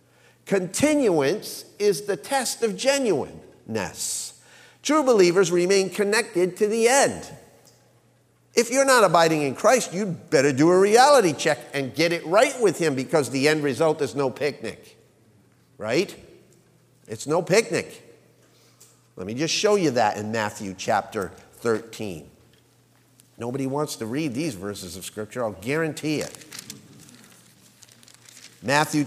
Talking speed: 130 wpm